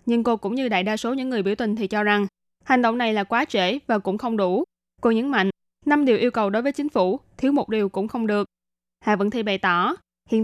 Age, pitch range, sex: 20-39, 200-245 Hz, female